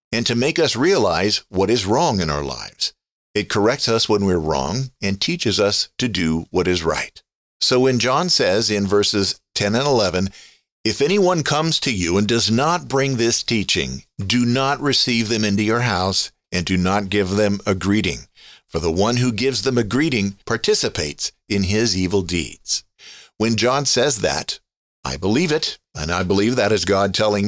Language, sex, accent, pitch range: English, male, American, 100-130 Hz